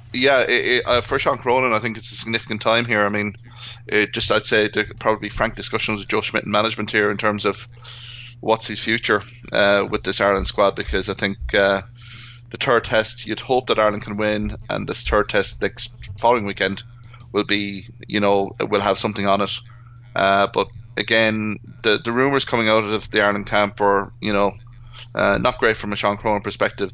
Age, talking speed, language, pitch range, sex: 20-39, 215 wpm, English, 100-115 Hz, male